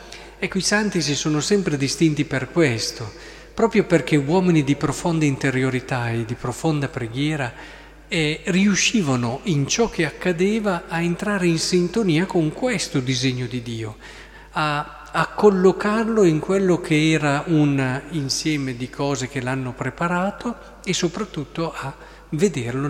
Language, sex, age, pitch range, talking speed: Italian, male, 40-59, 135-185 Hz, 135 wpm